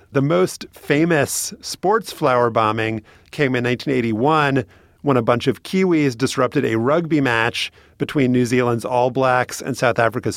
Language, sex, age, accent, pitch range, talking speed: English, male, 30-49, American, 110-150 Hz, 150 wpm